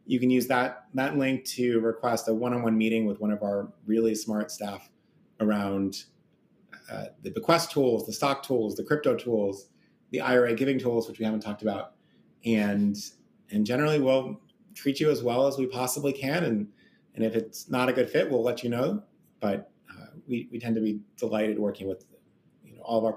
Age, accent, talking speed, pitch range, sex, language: 30-49, American, 200 wpm, 105-130 Hz, male, English